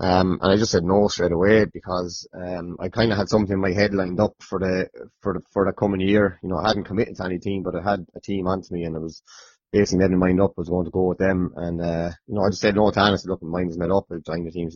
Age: 20-39